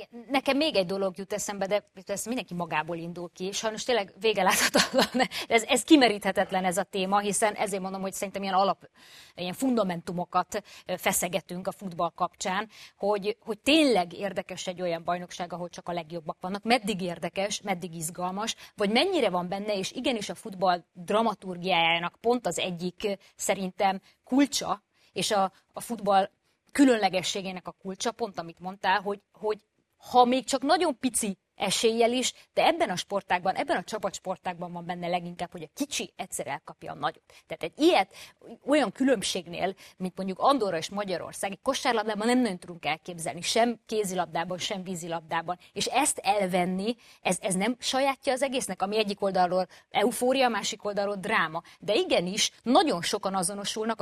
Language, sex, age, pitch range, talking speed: Hungarian, female, 20-39, 180-220 Hz, 160 wpm